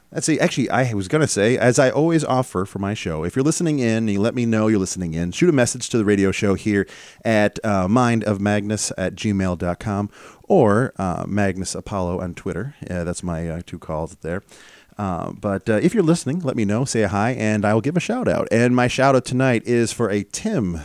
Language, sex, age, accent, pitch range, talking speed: English, male, 30-49, American, 95-125 Hz, 220 wpm